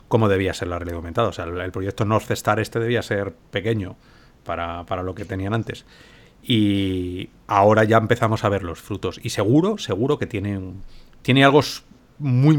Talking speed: 180 wpm